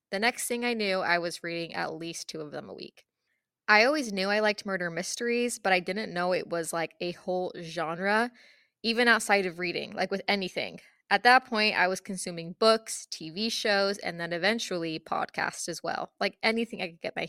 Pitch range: 180-225 Hz